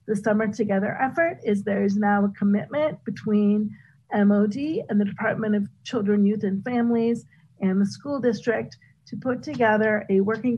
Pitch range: 195-225 Hz